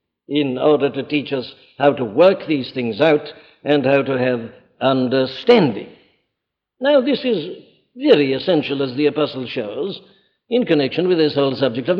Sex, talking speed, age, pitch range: male, 160 wpm, 60-79, 140-215 Hz